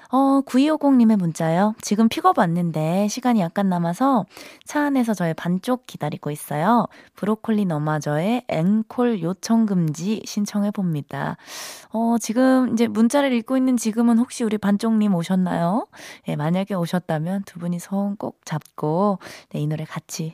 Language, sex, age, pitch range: Korean, female, 20-39, 170-230 Hz